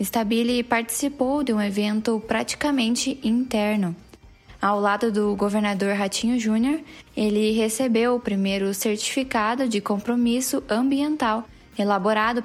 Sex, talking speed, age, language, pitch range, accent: female, 105 wpm, 10-29, Portuguese, 205-245 Hz, Brazilian